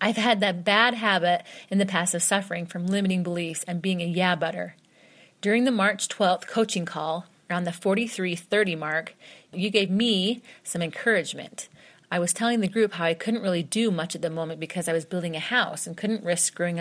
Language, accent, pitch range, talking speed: English, American, 170-205 Hz, 205 wpm